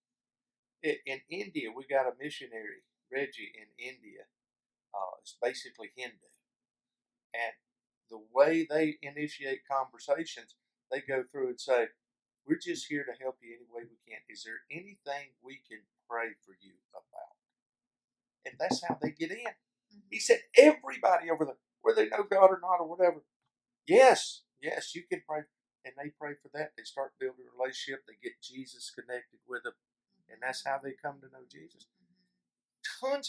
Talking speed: 165 wpm